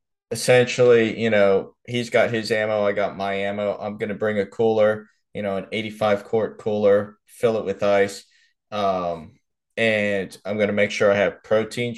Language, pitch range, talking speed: English, 100-115 Hz, 185 wpm